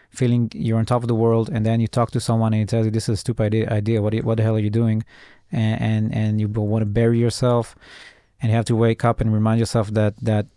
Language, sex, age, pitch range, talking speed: Hebrew, male, 20-39, 110-125 Hz, 285 wpm